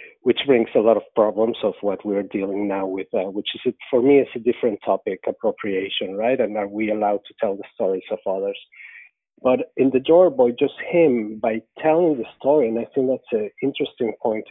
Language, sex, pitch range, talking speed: English, male, 110-140 Hz, 215 wpm